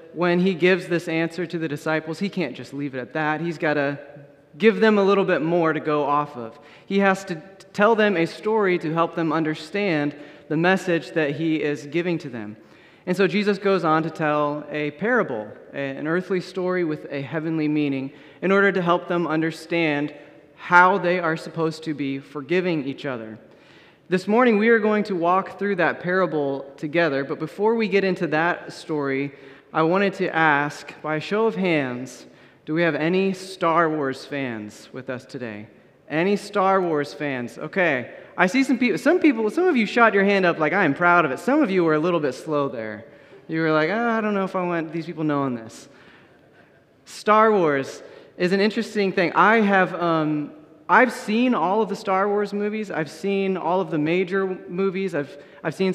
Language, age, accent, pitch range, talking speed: English, 30-49, American, 150-195 Hz, 205 wpm